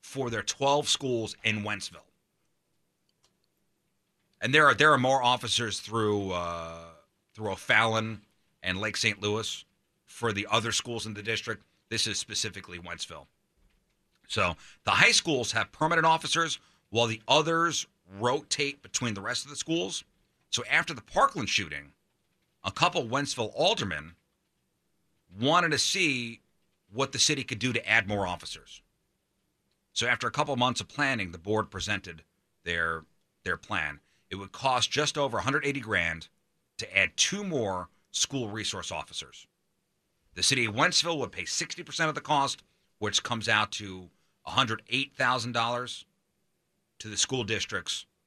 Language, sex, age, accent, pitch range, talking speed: English, male, 30-49, American, 105-140 Hz, 145 wpm